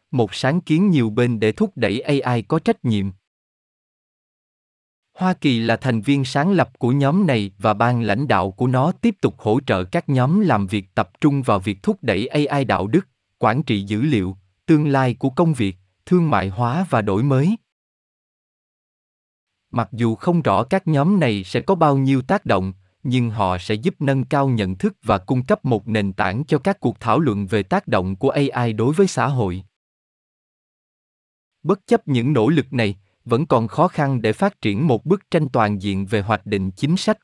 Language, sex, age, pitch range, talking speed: Vietnamese, male, 20-39, 105-150 Hz, 200 wpm